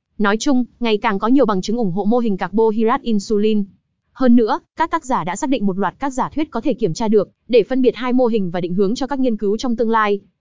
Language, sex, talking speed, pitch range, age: Vietnamese, female, 275 wpm, 205-255 Hz, 20-39